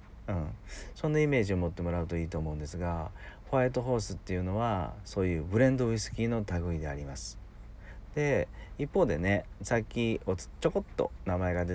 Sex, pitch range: male, 85-115 Hz